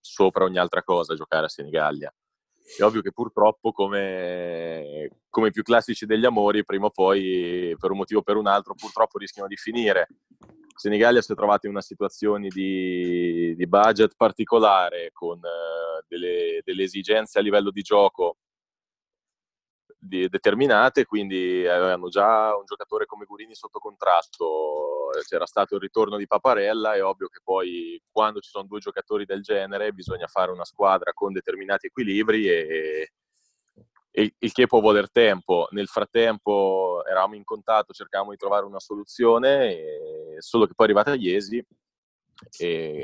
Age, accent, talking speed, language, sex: 20-39, native, 155 wpm, Italian, male